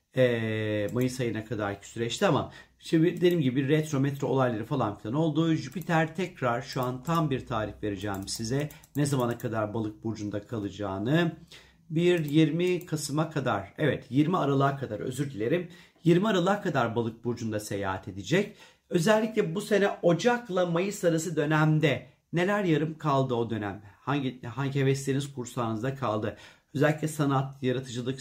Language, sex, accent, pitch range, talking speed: Turkish, male, native, 120-165 Hz, 140 wpm